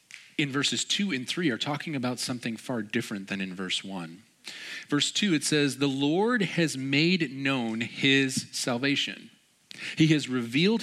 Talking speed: 160 wpm